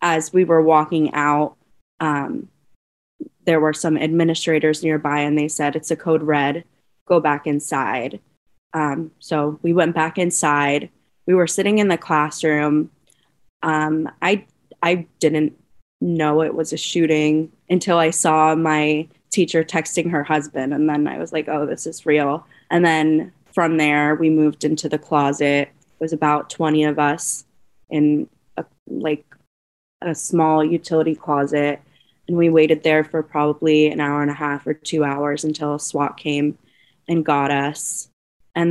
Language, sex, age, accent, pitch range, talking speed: English, female, 20-39, American, 150-170 Hz, 160 wpm